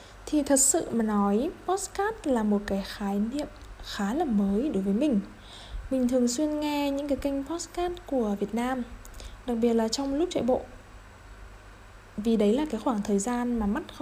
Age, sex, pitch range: 20-39, female, 200-275 Hz